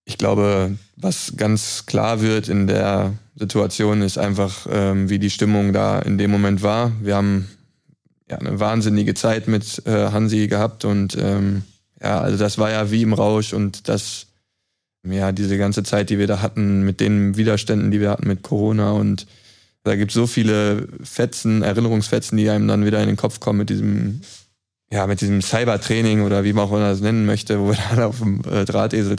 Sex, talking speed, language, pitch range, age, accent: male, 190 wpm, German, 100-110 Hz, 20-39, German